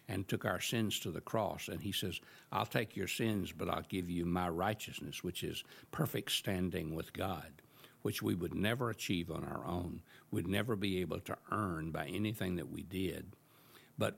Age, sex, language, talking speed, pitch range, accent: 60-79, male, English, 200 wpm, 90-110 Hz, American